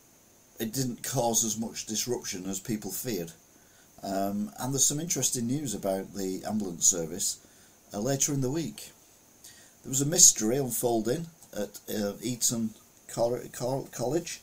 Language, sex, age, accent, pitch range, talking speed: English, male, 40-59, British, 100-120 Hz, 145 wpm